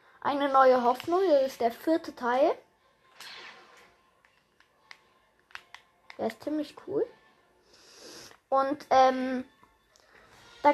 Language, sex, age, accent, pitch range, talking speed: German, female, 20-39, German, 230-310 Hz, 85 wpm